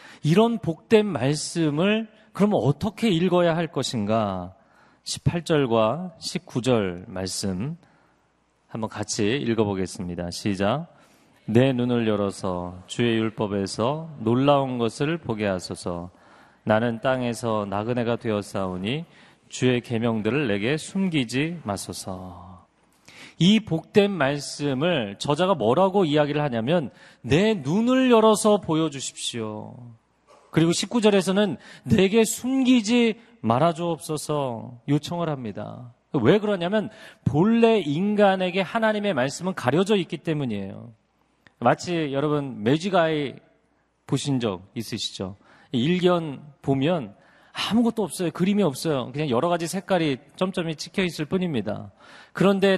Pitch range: 115-185 Hz